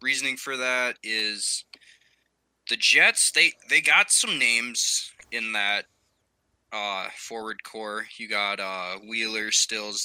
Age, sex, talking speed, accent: 20-39, male, 125 wpm, American